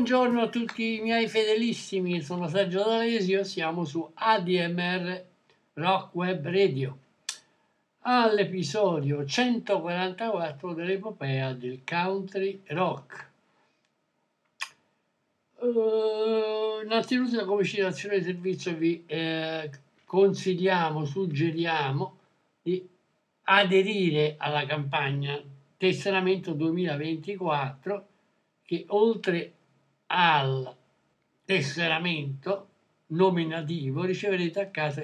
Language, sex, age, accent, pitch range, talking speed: Italian, male, 60-79, native, 155-195 Hz, 80 wpm